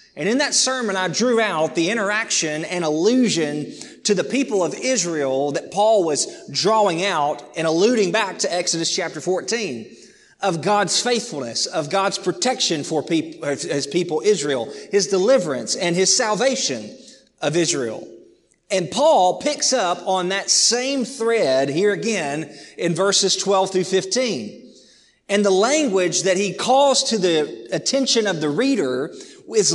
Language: English